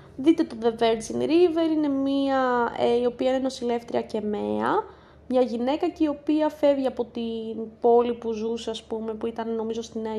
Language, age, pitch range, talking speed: Greek, 20-39, 230-290 Hz, 190 wpm